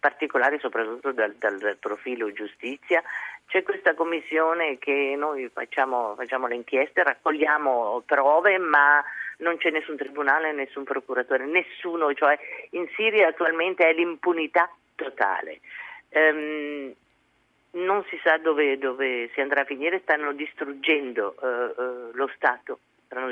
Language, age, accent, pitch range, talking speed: Italian, 40-59, native, 125-155 Hz, 125 wpm